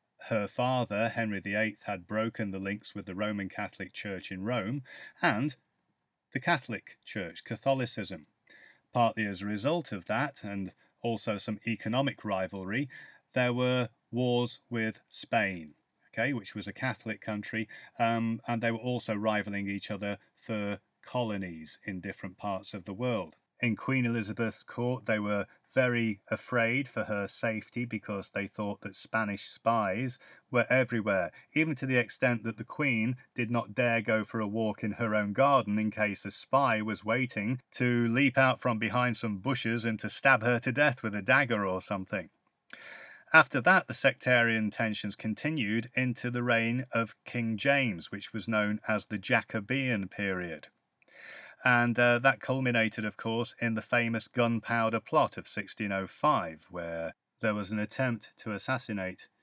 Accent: British